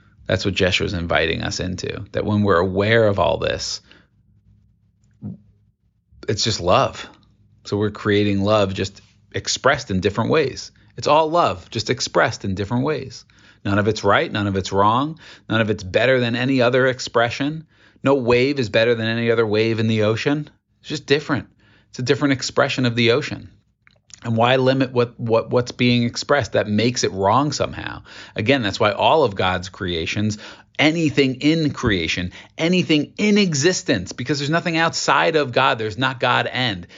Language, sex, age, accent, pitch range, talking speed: English, male, 30-49, American, 105-130 Hz, 175 wpm